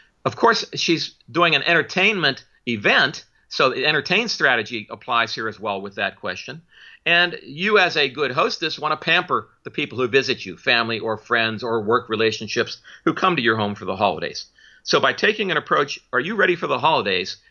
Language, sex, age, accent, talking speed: English, male, 50-69, American, 195 wpm